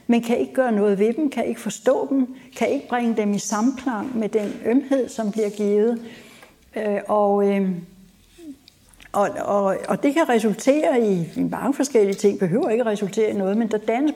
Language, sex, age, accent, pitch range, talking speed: Danish, female, 60-79, native, 195-240 Hz, 180 wpm